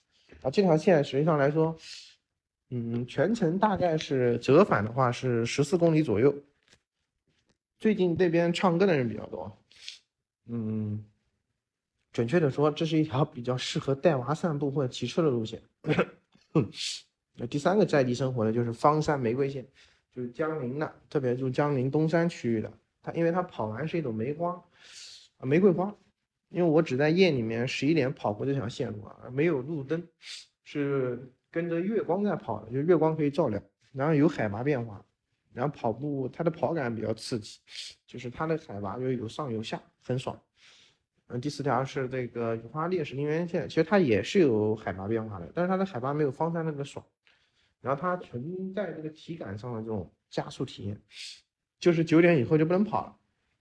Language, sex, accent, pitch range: Chinese, male, native, 120-165 Hz